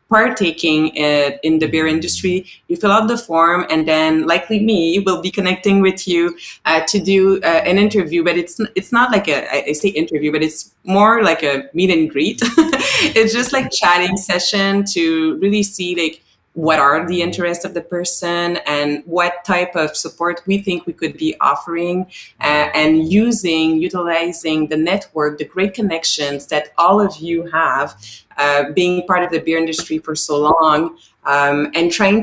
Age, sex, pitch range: 20-39, female, 155-195 Hz